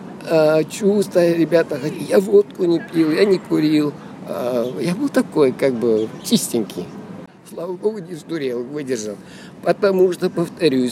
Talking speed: 130 wpm